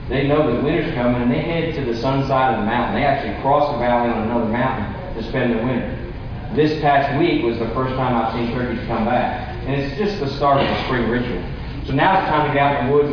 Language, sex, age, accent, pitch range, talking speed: English, male, 40-59, American, 120-140 Hz, 265 wpm